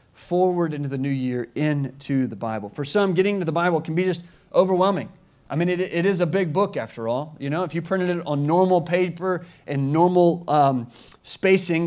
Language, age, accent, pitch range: English, 40-59, American, 150-185 Hz